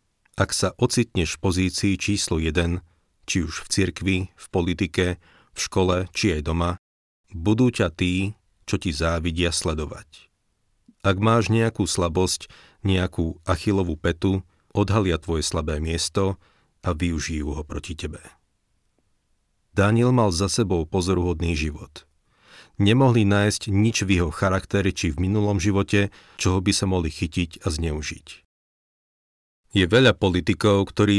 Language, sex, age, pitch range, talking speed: Slovak, male, 40-59, 85-100 Hz, 130 wpm